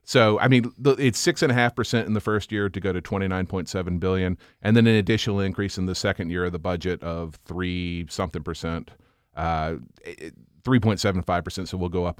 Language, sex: English, male